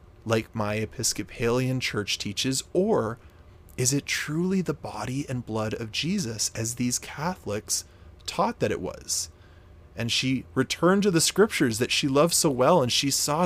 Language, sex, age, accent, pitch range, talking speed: English, male, 30-49, American, 100-145 Hz, 160 wpm